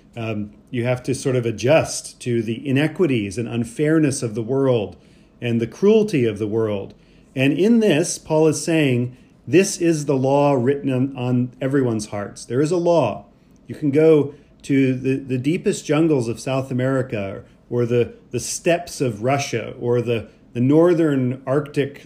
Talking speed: 170 wpm